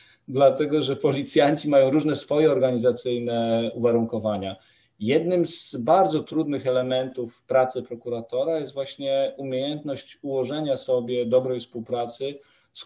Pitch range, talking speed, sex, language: 105-130 Hz, 105 wpm, male, Polish